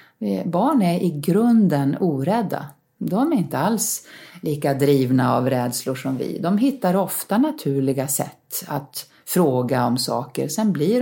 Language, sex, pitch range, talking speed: Swedish, female, 140-200 Hz, 140 wpm